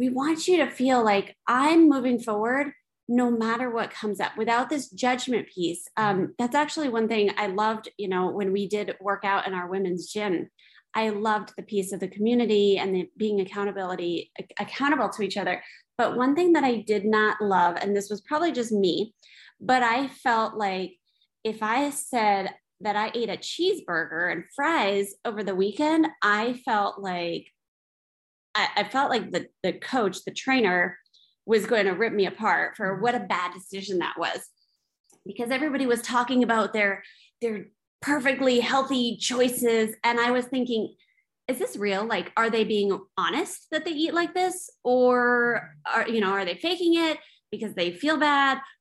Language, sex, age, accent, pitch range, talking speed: English, female, 20-39, American, 200-255 Hz, 175 wpm